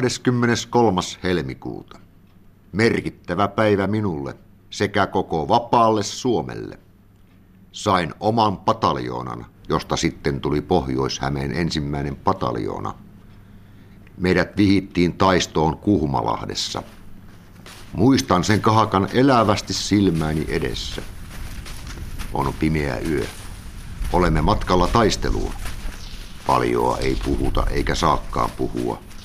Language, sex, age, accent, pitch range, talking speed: Finnish, male, 60-79, native, 70-100 Hz, 80 wpm